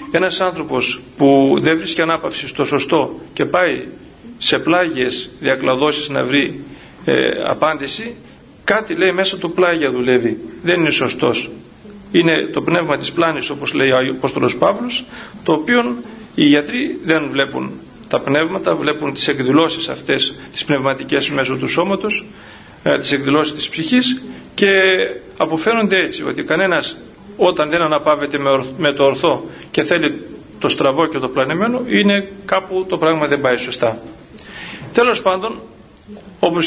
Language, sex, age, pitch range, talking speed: Greek, male, 40-59, 140-205 Hz, 140 wpm